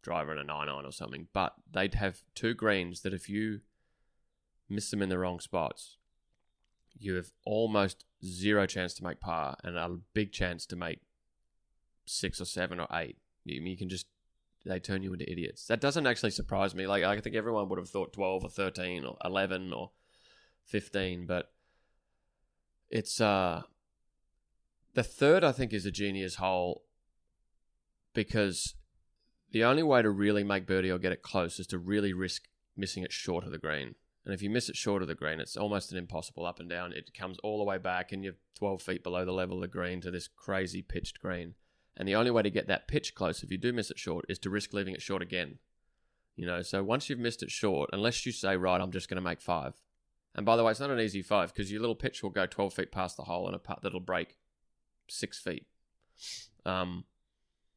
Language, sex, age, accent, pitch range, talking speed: English, male, 20-39, Australian, 85-100 Hz, 215 wpm